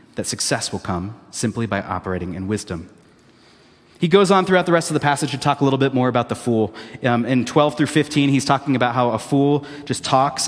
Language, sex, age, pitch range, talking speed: English, male, 30-49, 115-150 Hz, 230 wpm